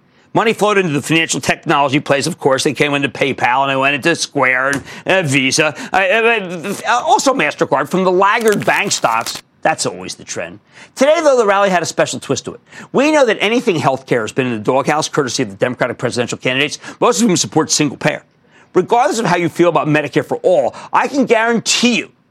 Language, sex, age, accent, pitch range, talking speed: English, male, 50-69, American, 160-235 Hz, 205 wpm